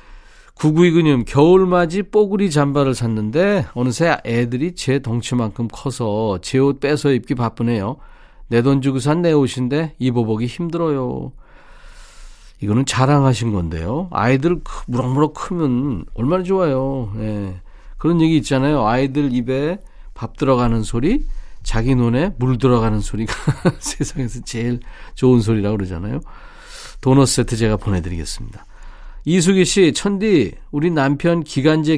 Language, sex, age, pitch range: Korean, male, 40-59, 115-155 Hz